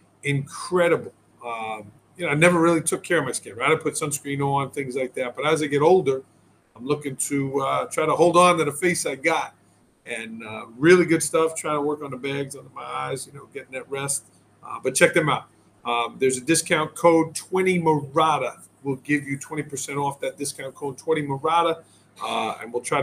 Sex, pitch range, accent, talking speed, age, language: male, 130-155 Hz, American, 220 wpm, 40-59, English